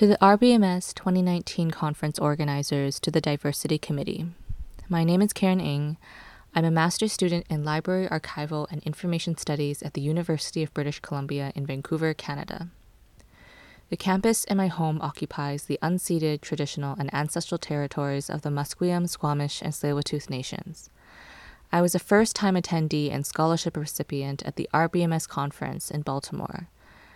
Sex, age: female, 20-39